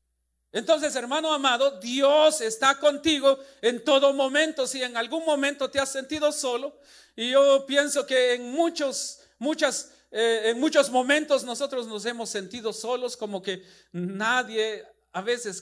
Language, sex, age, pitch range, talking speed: Spanish, male, 50-69, 210-280 Hz, 145 wpm